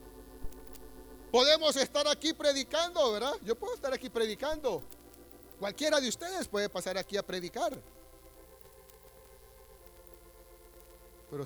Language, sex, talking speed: Spanish, male, 100 wpm